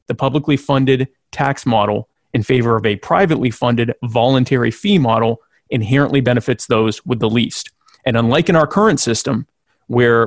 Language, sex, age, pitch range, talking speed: English, male, 30-49, 120-140 Hz, 160 wpm